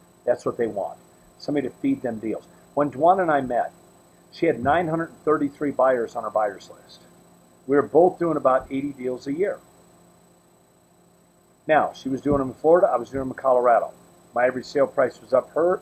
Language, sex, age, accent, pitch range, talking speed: English, male, 50-69, American, 135-180 Hz, 195 wpm